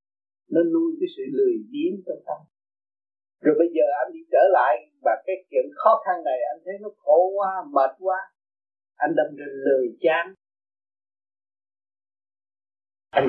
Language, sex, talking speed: Vietnamese, male, 155 wpm